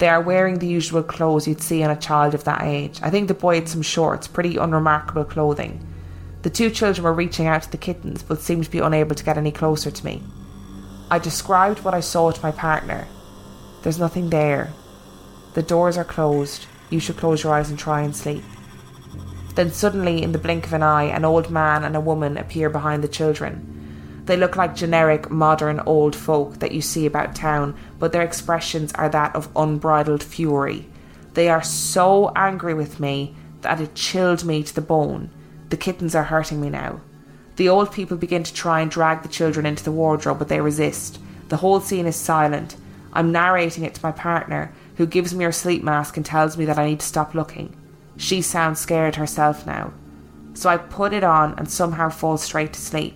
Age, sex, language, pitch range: 20-39, female, English, 150-170 Hz